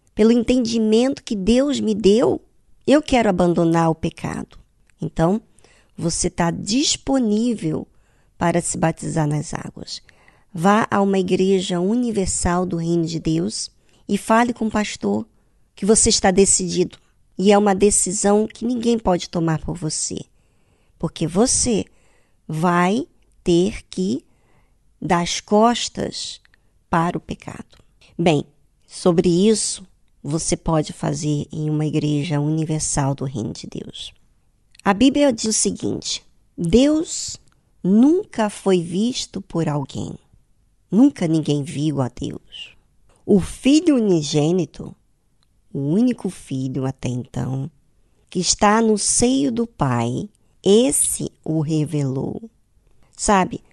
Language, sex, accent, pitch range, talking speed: Portuguese, male, Brazilian, 150-215 Hz, 120 wpm